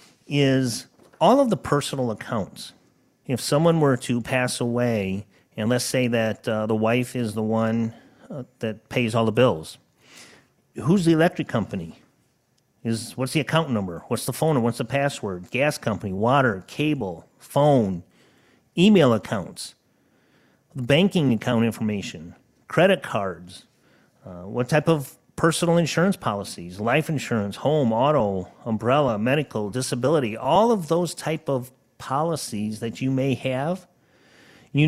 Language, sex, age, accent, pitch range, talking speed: English, male, 40-59, American, 115-140 Hz, 140 wpm